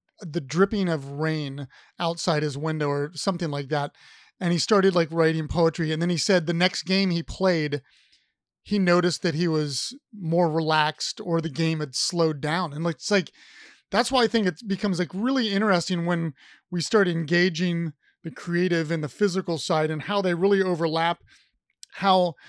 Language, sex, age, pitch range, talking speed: English, male, 30-49, 165-200 Hz, 180 wpm